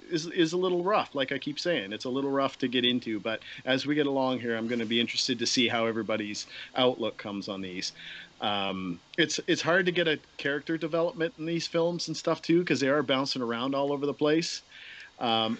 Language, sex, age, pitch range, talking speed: English, male, 40-59, 120-165 Hz, 230 wpm